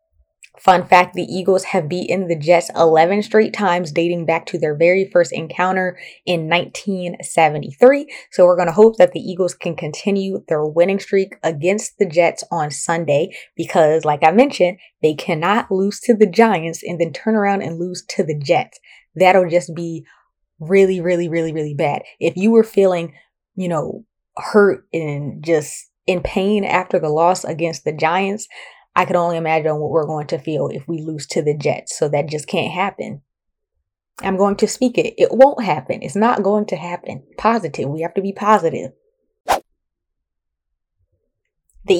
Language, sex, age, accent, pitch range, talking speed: English, female, 20-39, American, 165-195 Hz, 175 wpm